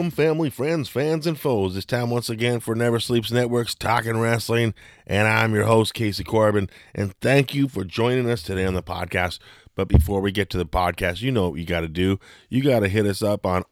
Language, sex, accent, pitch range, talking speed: English, male, American, 90-120 Hz, 230 wpm